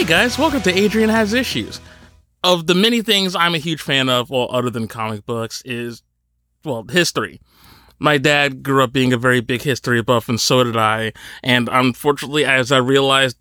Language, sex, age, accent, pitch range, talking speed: English, male, 30-49, American, 125-160 Hz, 190 wpm